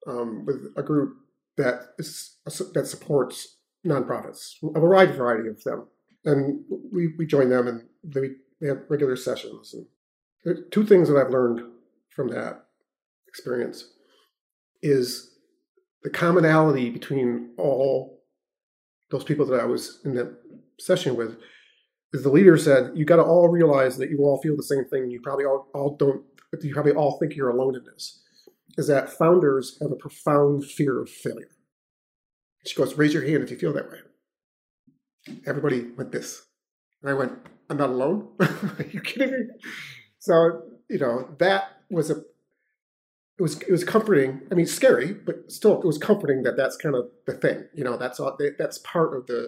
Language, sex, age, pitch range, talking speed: English, male, 40-59, 130-175 Hz, 175 wpm